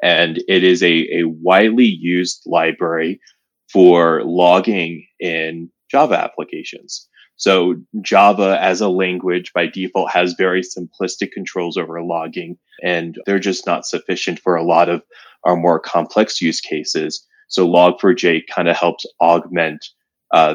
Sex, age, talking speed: male, 20-39, 135 wpm